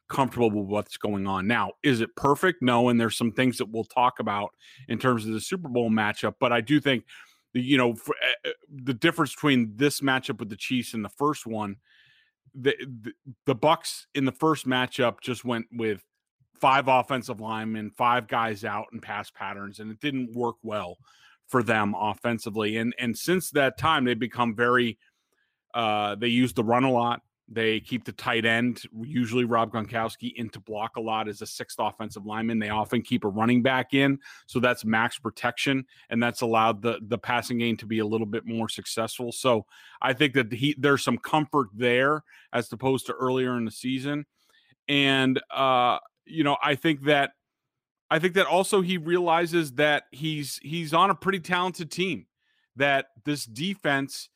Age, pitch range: 30-49, 115-140 Hz